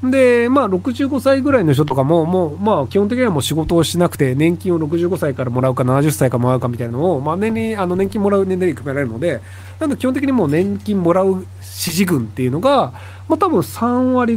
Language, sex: Japanese, male